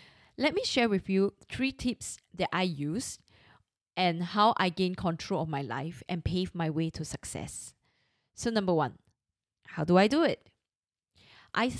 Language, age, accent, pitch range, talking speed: English, 20-39, Malaysian, 165-215 Hz, 170 wpm